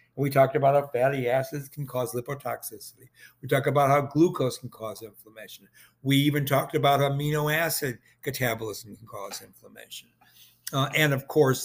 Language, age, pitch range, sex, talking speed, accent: English, 60-79, 120-150 Hz, male, 160 wpm, American